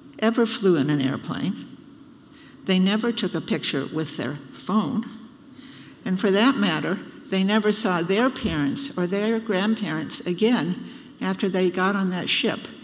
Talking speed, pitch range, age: 150 wpm, 180-260 Hz, 60-79